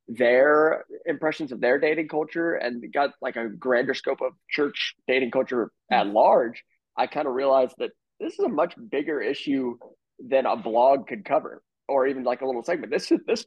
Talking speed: 185 wpm